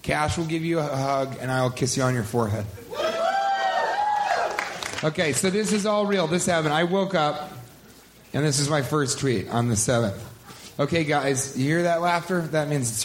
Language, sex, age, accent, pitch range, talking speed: English, male, 30-49, American, 140-180 Hz, 195 wpm